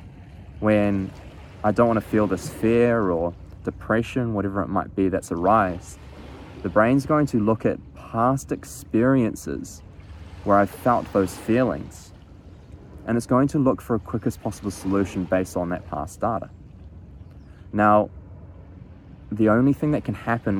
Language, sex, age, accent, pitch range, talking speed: English, male, 20-39, Australian, 90-105 Hz, 145 wpm